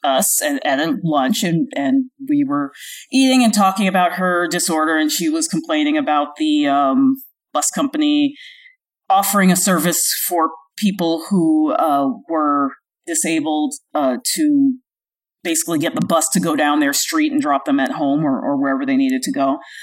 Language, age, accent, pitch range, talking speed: English, 40-59, American, 160-260 Hz, 165 wpm